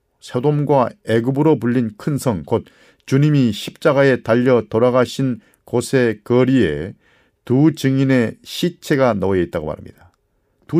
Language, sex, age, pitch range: Korean, male, 40-59, 100-130 Hz